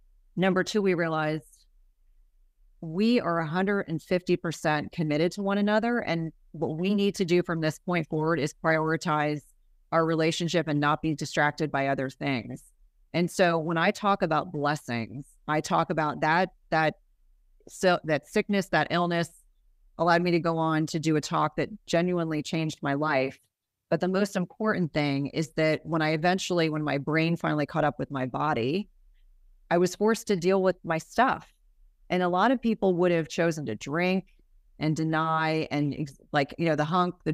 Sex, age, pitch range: female, 30-49, 150-180 Hz